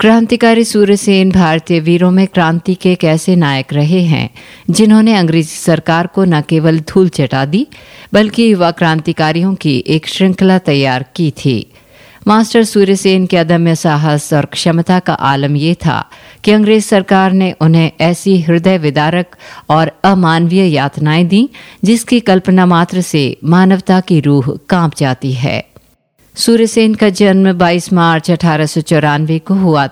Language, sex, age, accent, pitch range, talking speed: Hindi, female, 50-69, native, 155-195 Hz, 140 wpm